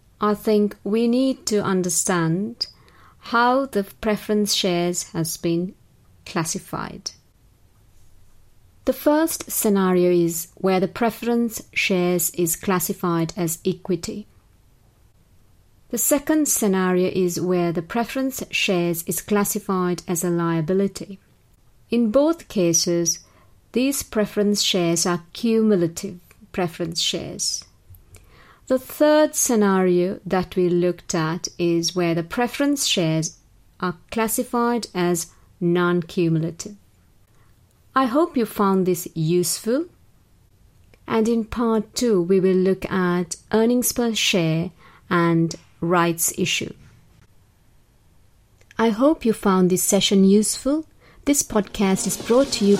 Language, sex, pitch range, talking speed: English, female, 170-215 Hz, 110 wpm